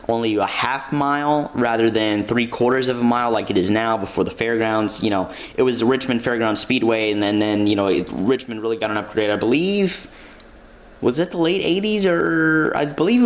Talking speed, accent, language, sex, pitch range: 220 wpm, American, English, male, 100-125 Hz